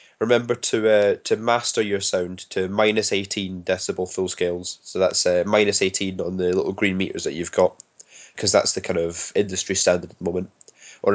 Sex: male